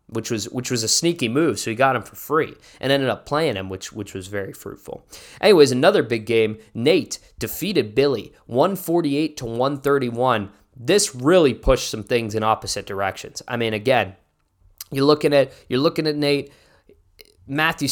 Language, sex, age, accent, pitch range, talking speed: English, male, 20-39, American, 105-145 Hz, 170 wpm